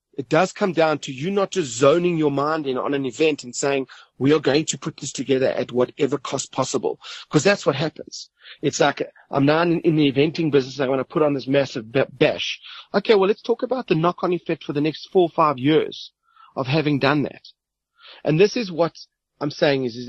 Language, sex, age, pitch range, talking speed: English, male, 30-49, 130-170 Hz, 225 wpm